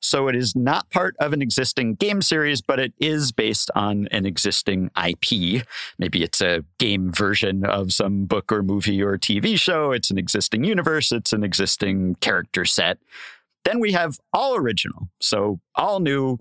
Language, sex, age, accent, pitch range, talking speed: English, male, 50-69, American, 100-145 Hz, 175 wpm